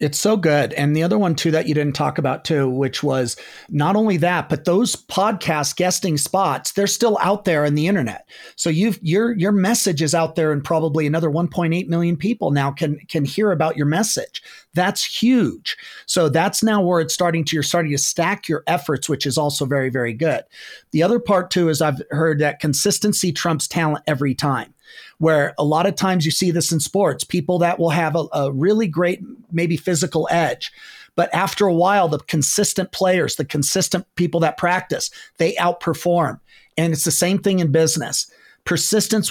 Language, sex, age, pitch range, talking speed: English, male, 40-59, 150-190 Hz, 195 wpm